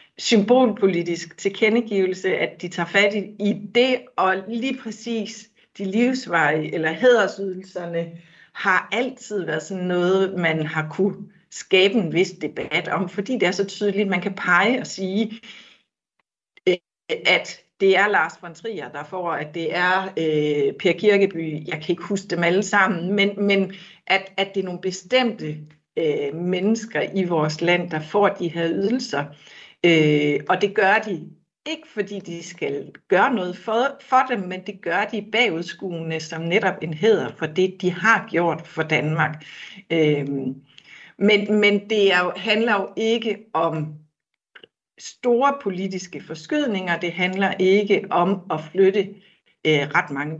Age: 60-79